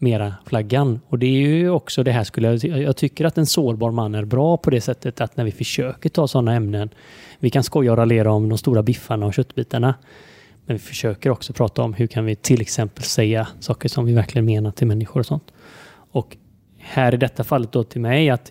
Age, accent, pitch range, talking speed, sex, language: 30-49, native, 110-135 Hz, 225 wpm, male, Swedish